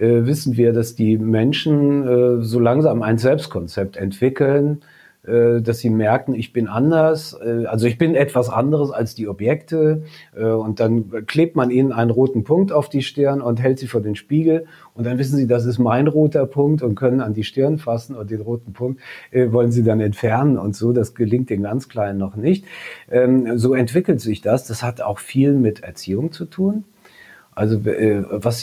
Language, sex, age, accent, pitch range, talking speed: German, male, 40-59, German, 115-145 Hz, 180 wpm